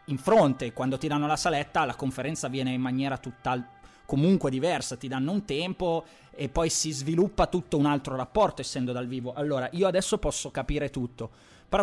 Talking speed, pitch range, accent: 190 wpm, 140-190 Hz, native